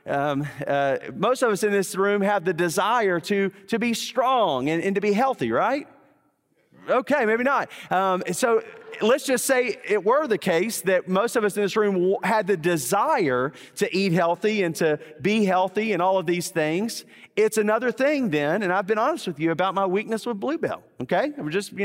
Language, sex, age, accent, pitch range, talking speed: English, male, 40-59, American, 170-235 Hz, 205 wpm